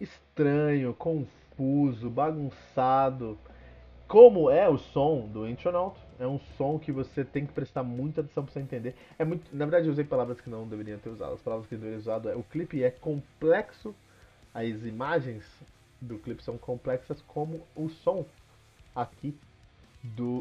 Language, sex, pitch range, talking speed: Portuguese, male, 120-165 Hz, 160 wpm